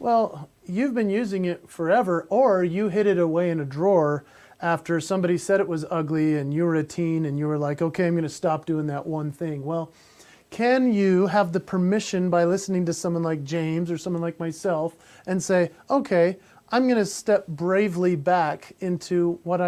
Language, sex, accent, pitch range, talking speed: English, male, American, 165-205 Hz, 190 wpm